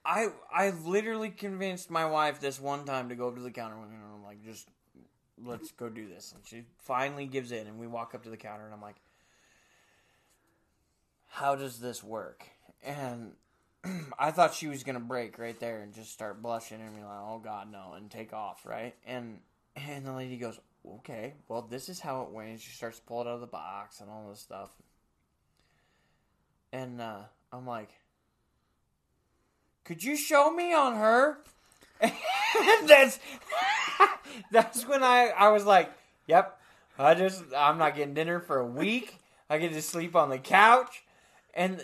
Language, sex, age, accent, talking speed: English, male, 20-39, American, 180 wpm